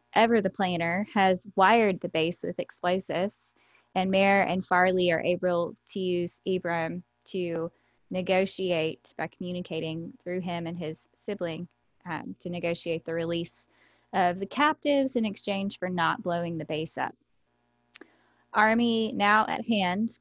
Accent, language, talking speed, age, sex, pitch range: American, English, 140 wpm, 10-29, female, 170-200 Hz